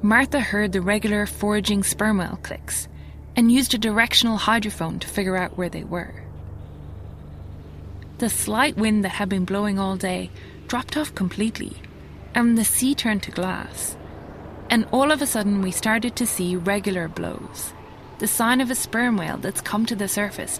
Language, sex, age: English, female, 20-39